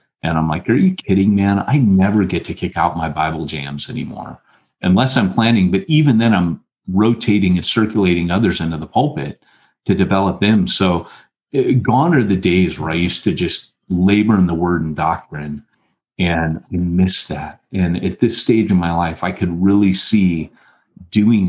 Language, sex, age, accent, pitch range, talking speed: English, male, 40-59, American, 90-115 Hz, 185 wpm